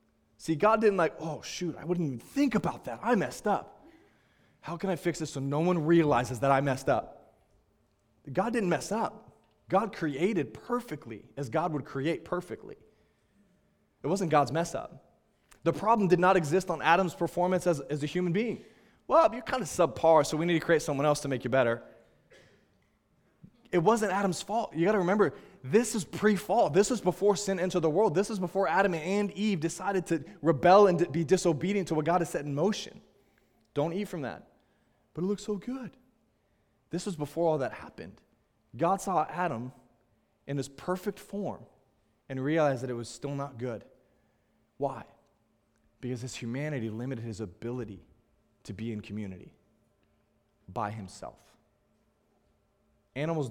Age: 20-39